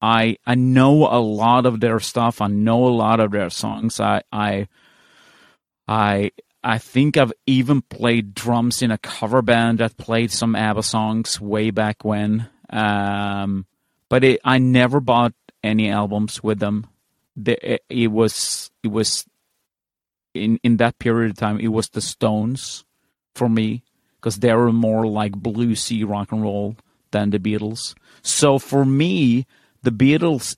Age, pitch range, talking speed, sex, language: 30-49, 105-120 Hz, 160 wpm, male, English